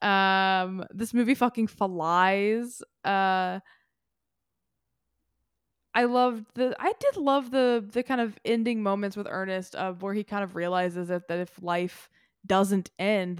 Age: 20-39